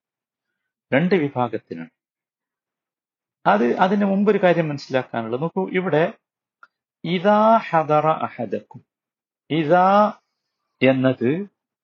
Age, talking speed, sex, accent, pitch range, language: 50-69, 70 wpm, male, native, 125-190 Hz, Malayalam